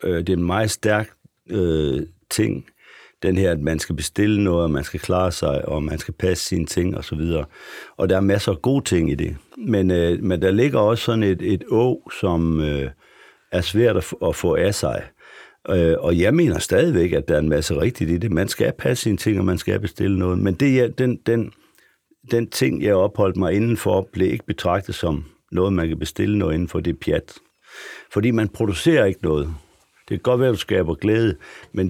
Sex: male